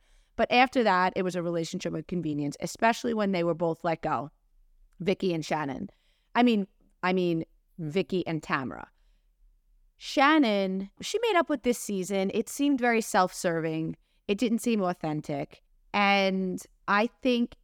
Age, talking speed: 30-49, 150 wpm